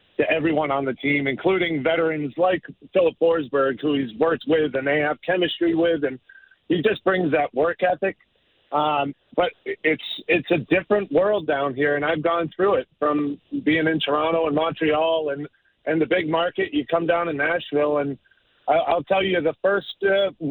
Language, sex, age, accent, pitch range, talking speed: English, male, 40-59, American, 150-185 Hz, 185 wpm